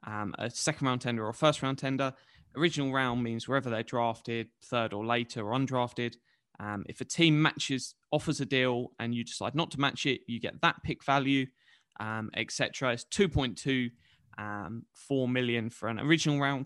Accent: British